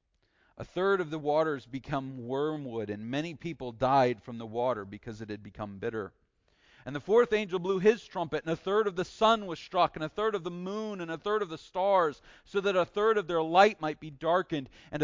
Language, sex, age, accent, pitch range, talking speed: English, male, 40-59, American, 130-175 Hz, 225 wpm